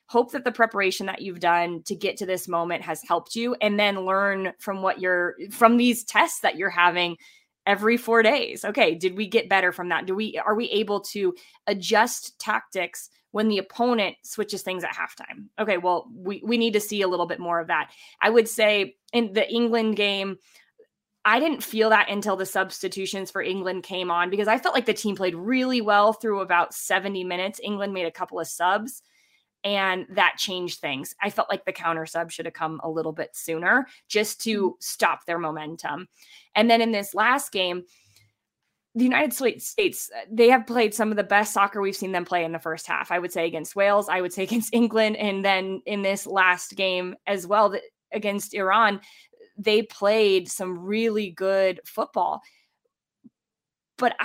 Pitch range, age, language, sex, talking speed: 185-225 Hz, 20-39, English, female, 195 wpm